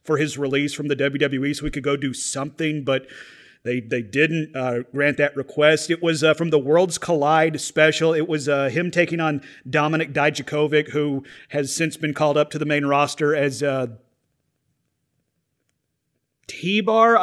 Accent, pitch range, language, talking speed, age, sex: American, 145-160 Hz, English, 170 wpm, 30-49, male